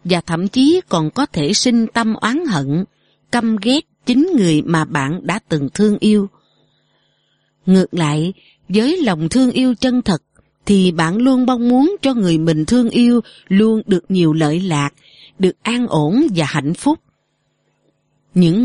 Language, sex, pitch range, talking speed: Vietnamese, female, 165-245 Hz, 160 wpm